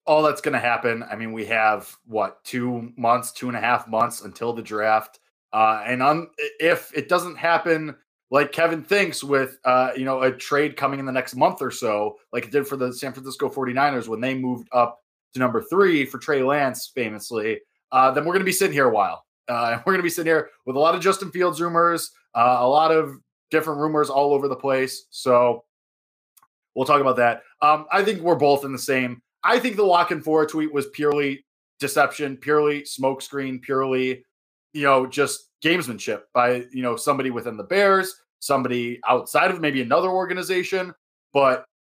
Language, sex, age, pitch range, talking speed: English, male, 20-39, 125-165 Hz, 205 wpm